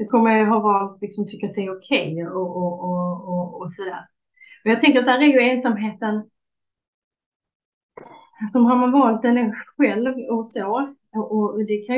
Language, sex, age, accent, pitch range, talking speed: Swedish, female, 30-49, native, 195-225 Hz, 185 wpm